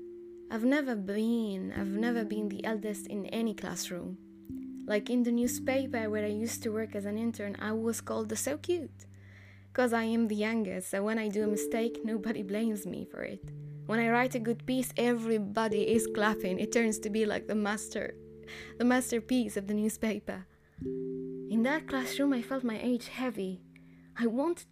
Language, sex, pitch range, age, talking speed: English, female, 175-230 Hz, 20-39, 185 wpm